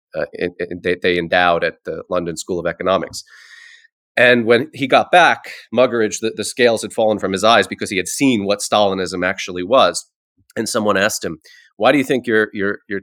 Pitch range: 90-120 Hz